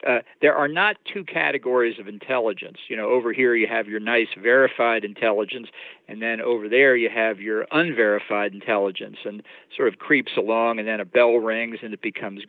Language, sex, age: English, male, 50-69